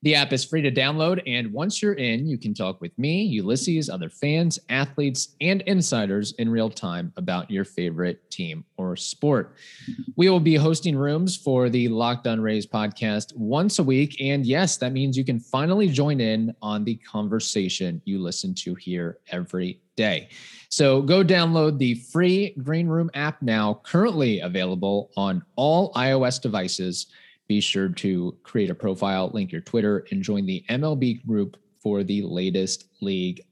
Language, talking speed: English, 170 wpm